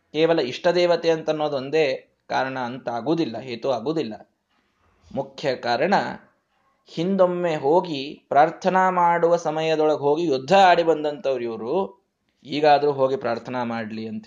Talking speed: 115 wpm